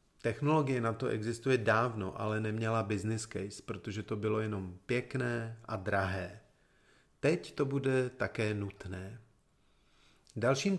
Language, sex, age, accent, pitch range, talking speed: Czech, male, 40-59, native, 105-135 Hz, 120 wpm